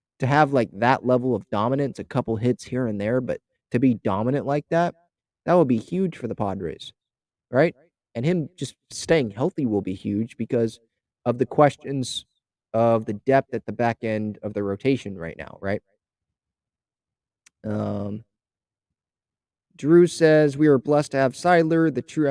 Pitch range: 110-145 Hz